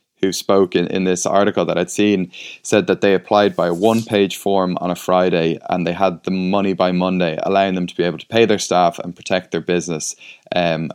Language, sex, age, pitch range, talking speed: English, male, 20-39, 90-100 Hz, 230 wpm